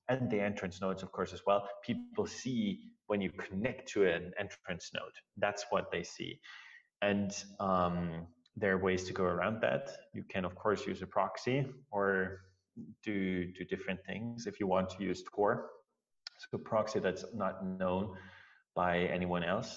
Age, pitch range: 30-49, 90-105 Hz